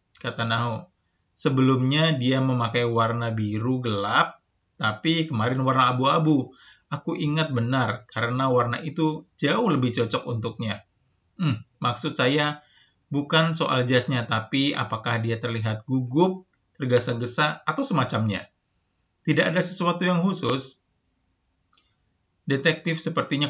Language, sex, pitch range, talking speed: Indonesian, male, 115-150 Hz, 110 wpm